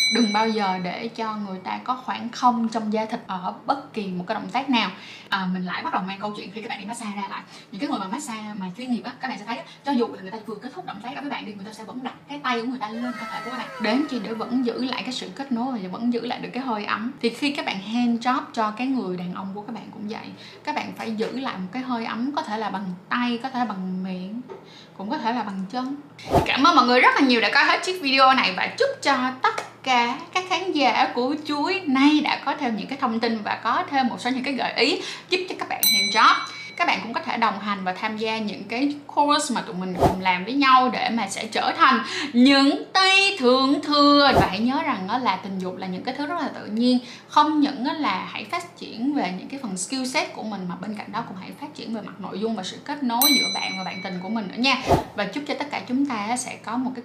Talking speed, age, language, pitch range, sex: 295 wpm, 10-29, Vietnamese, 210-270 Hz, female